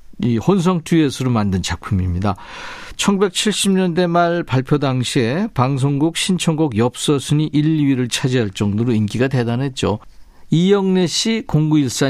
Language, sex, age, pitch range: Korean, male, 50-69, 115-170 Hz